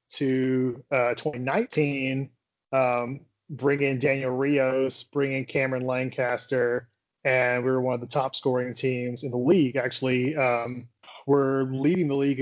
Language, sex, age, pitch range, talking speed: English, male, 30-49, 130-155 Hz, 140 wpm